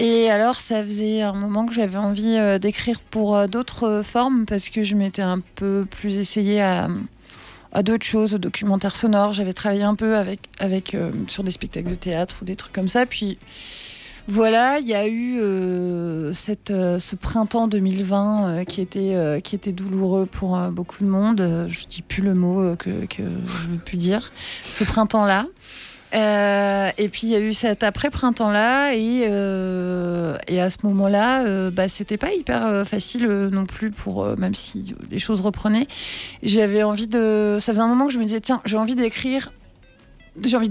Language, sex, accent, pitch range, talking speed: English, female, French, 195-220 Hz, 200 wpm